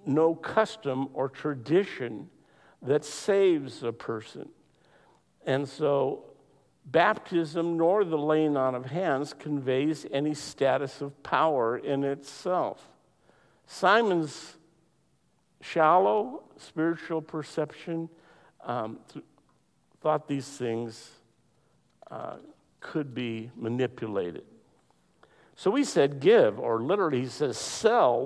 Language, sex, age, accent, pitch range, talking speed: English, male, 50-69, American, 135-160 Hz, 95 wpm